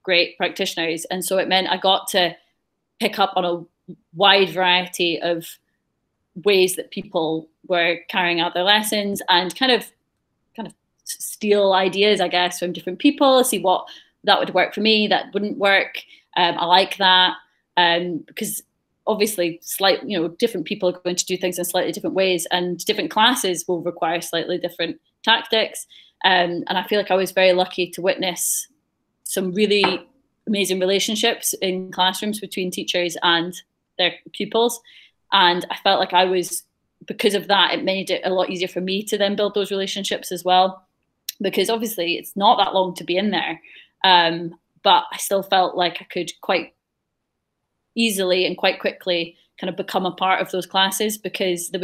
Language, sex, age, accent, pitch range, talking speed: English, female, 20-39, British, 175-195 Hz, 180 wpm